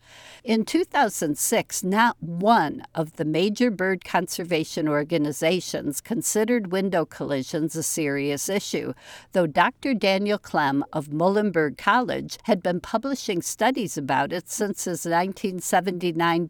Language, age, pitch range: English, 60-79, 160-205 Hz